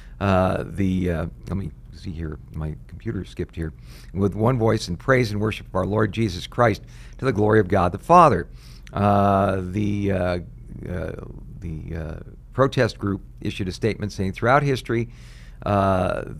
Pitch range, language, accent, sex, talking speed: 90-110 Hz, English, American, male, 165 wpm